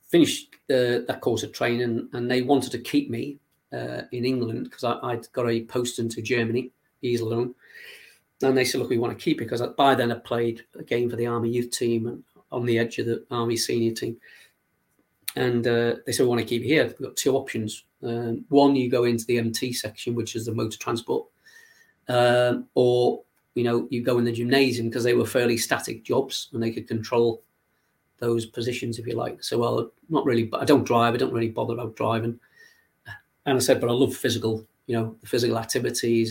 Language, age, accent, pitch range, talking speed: English, 40-59, British, 115-130 Hz, 215 wpm